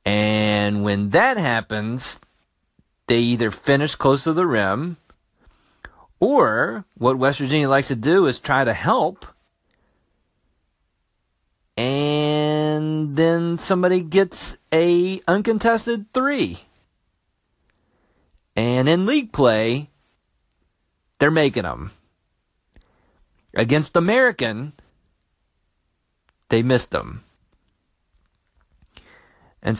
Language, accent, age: English, American, 40-59